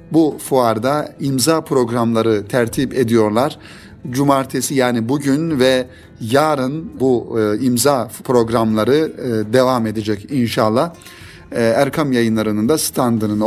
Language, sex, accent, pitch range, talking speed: Turkish, male, native, 120-160 Hz, 95 wpm